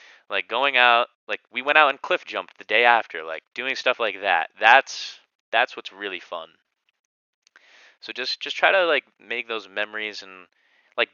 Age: 20-39